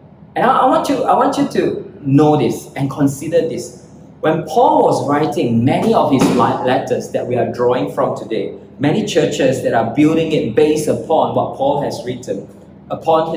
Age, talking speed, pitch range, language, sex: 20-39, 170 wpm, 130-175 Hz, English, male